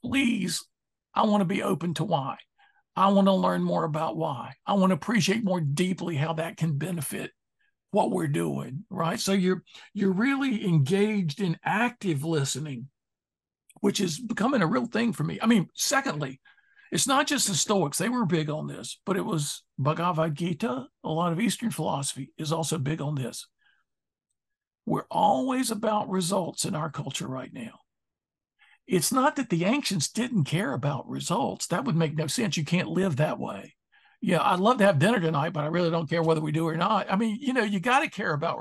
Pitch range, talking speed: 160-230 Hz, 195 wpm